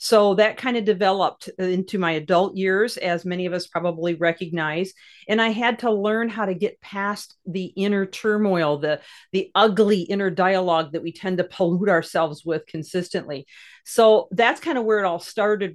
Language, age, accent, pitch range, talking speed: English, 40-59, American, 170-210 Hz, 185 wpm